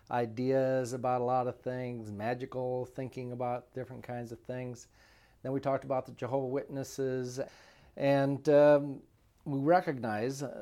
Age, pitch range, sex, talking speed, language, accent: 40-59, 115-135 Hz, male, 135 wpm, English, American